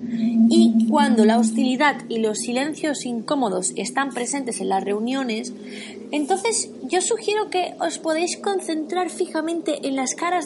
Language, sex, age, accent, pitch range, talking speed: Spanish, female, 20-39, Spanish, 235-315 Hz, 140 wpm